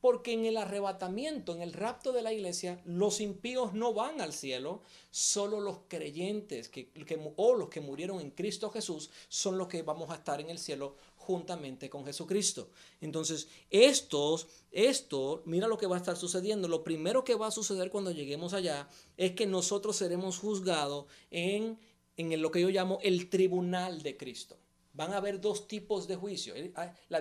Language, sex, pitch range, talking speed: Spanish, male, 165-210 Hz, 170 wpm